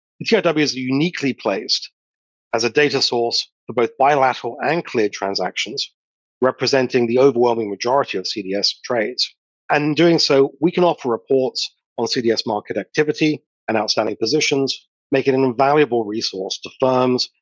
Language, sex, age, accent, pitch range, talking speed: English, male, 40-59, British, 115-145 Hz, 145 wpm